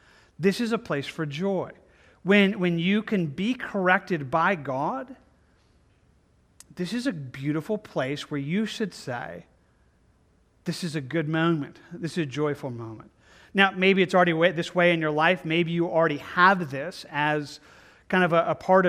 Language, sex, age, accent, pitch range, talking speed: English, male, 40-59, American, 160-210 Hz, 170 wpm